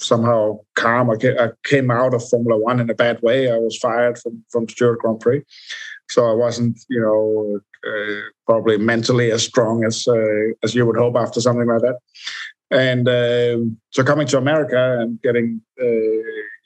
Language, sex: English, male